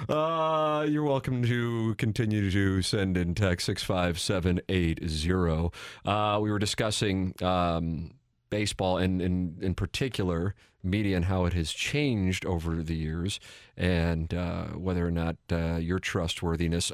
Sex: male